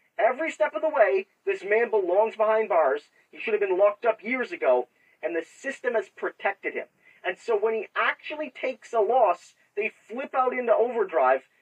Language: English